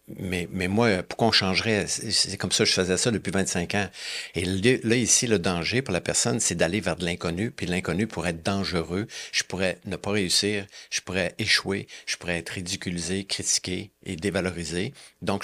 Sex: male